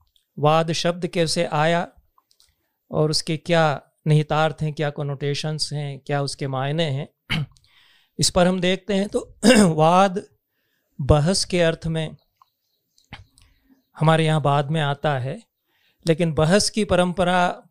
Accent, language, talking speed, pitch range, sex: native, Hindi, 125 wpm, 150-175 Hz, male